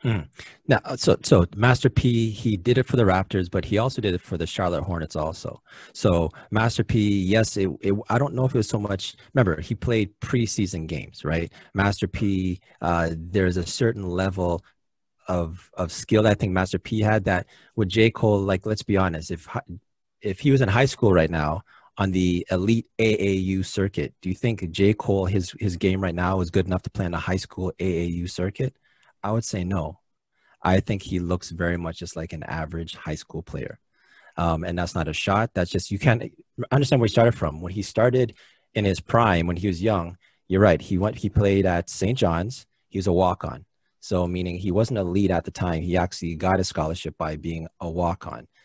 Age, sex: 30-49, male